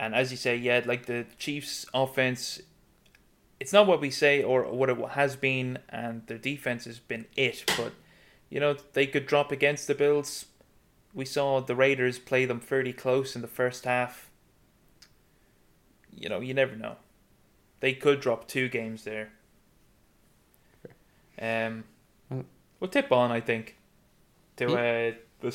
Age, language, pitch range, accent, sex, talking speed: 20-39, English, 120-145 Hz, British, male, 155 wpm